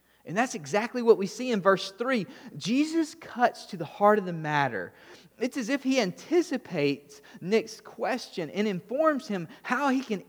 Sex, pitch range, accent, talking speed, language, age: male, 150-225 Hz, American, 175 wpm, English, 30-49